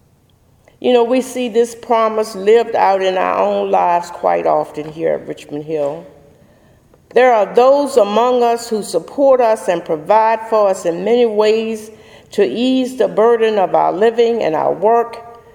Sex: female